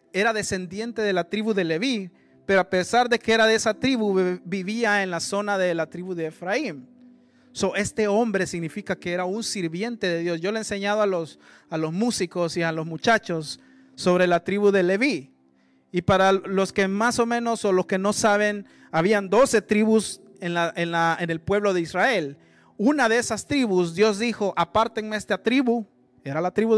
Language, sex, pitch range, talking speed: Spanish, male, 175-220 Hz, 200 wpm